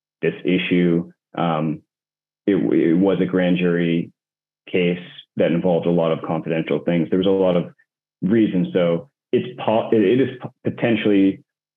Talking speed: 155 wpm